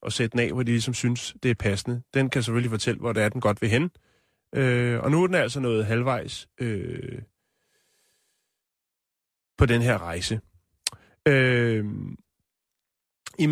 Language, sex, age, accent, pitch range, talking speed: Danish, male, 30-49, native, 120-170 Hz, 155 wpm